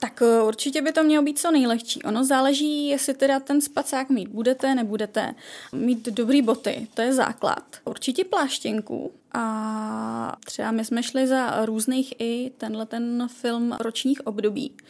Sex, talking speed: female, 155 wpm